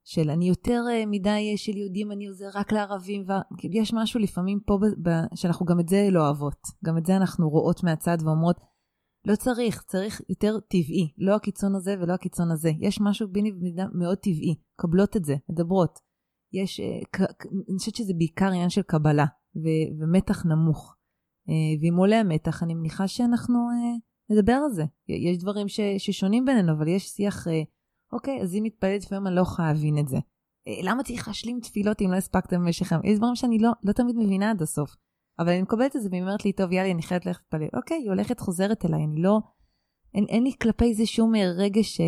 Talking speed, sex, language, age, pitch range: 200 wpm, female, Hebrew, 30-49, 165-205 Hz